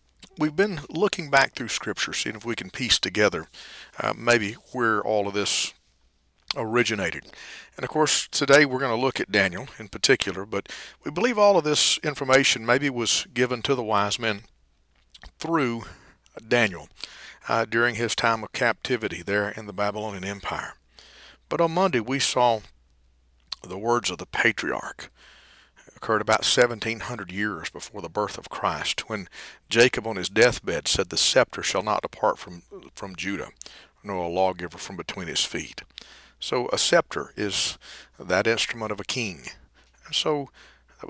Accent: American